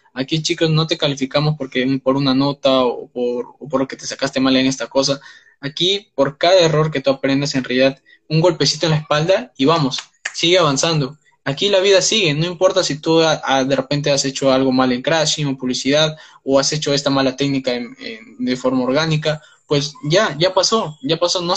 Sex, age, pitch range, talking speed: male, 20-39, 135-160 Hz, 215 wpm